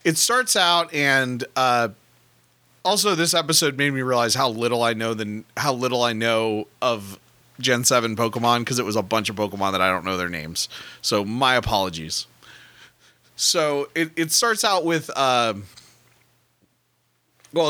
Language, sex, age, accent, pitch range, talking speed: English, male, 30-49, American, 120-160 Hz, 165 wpm